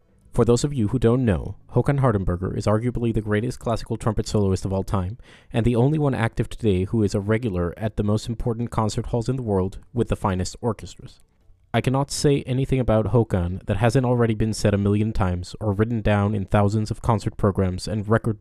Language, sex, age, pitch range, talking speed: English, male, 30-49, 100-120 Hz, 215 wpm